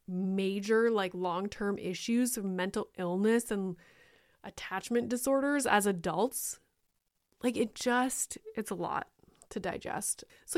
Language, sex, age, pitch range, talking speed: English, female, 20-39, 185-230 Hz, 120 wpm